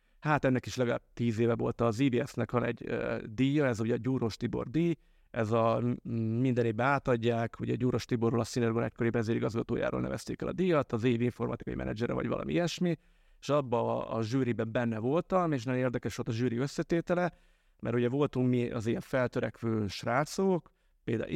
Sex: male